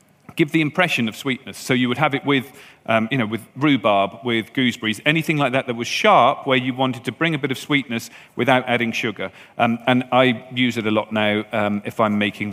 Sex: male